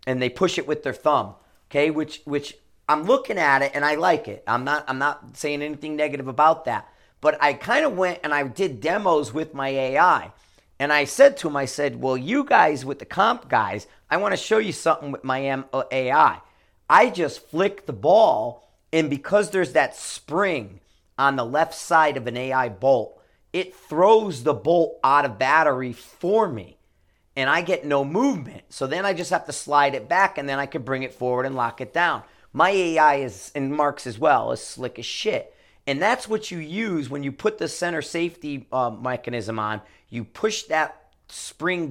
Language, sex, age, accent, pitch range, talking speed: English, male, 40-59, American, 130-160 Hz, 205 wpm